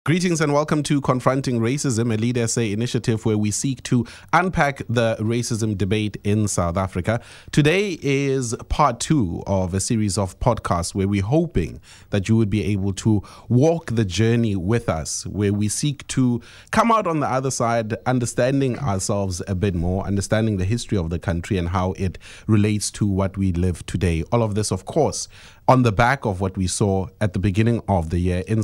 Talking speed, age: 195 wpm, 30-49